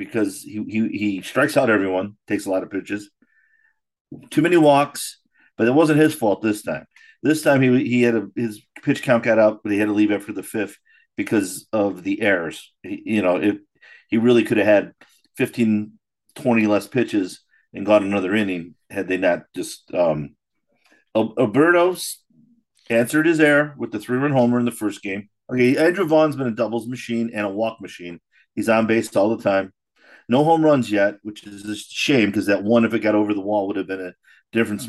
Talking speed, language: 205 wpm, English